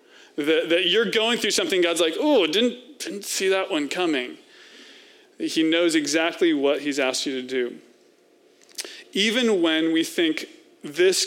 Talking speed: 150 wpm